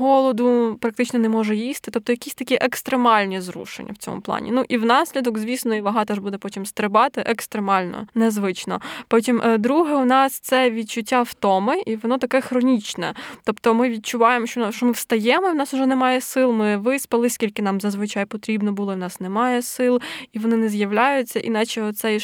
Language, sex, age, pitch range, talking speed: Ukrainian, female, 10-29, 210-245 Hz, 180 wpm